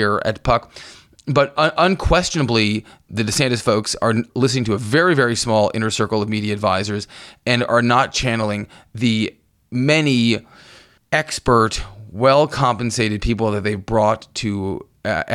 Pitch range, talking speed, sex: 105-125 Hz, 130 wpm, male